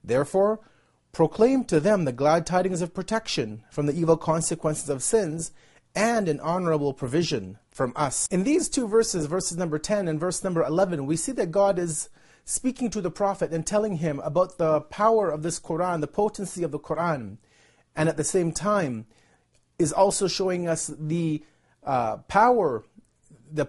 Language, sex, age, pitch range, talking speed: English, male, 30-49, 155-200 Hz, 170 wpm